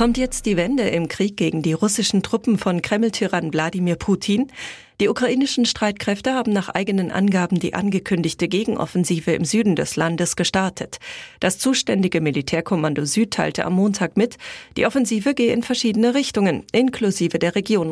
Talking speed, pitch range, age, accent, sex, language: 155 wpm, 175-230 Hz, 40-59, German, female, German